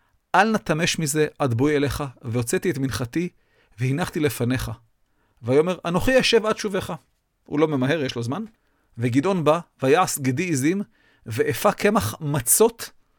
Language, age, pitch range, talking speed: Hebrew, 40-59, 120-180 Hz, 135 wpm